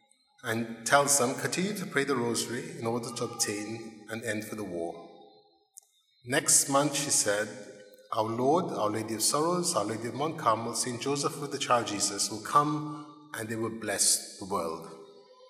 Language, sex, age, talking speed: English, male, 30-49, 180 wpm